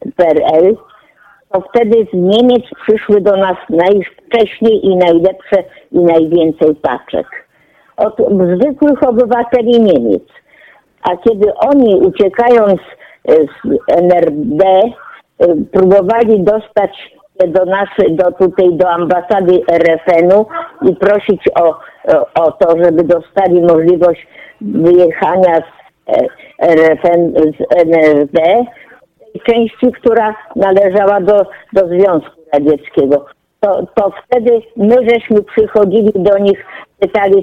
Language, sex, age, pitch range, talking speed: Polish, female, 50-69, 175-220 Hz, 100 wpm